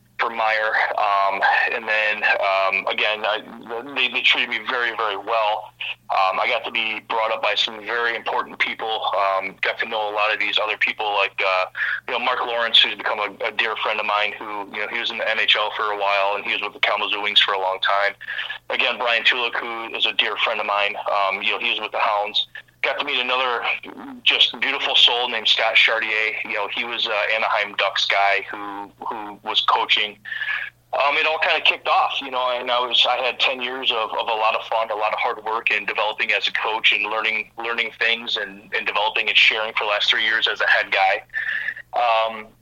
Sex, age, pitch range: male, 30-49, 100-115 Hz